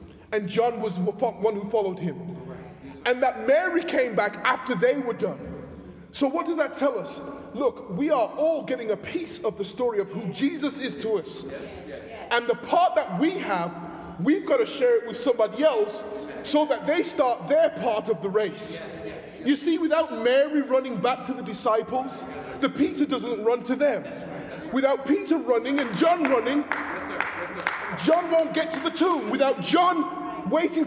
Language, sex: English, male